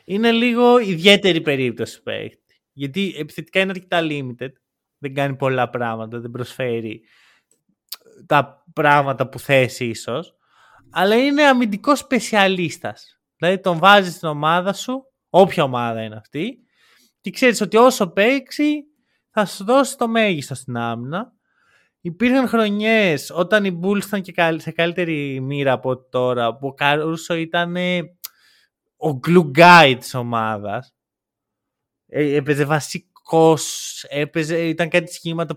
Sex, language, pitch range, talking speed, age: male, Greek, 135-205 Hz, 125 wpm, 20-39